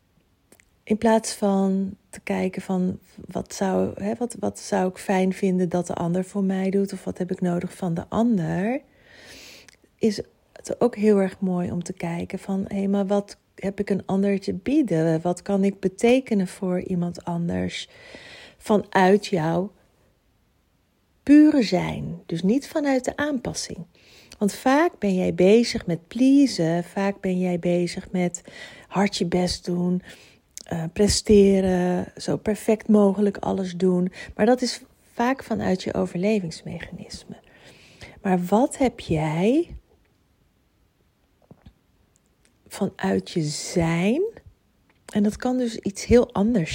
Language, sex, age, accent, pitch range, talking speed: Dutch, female, 40-59, Dutch, 180-215 Hz, 140 wpm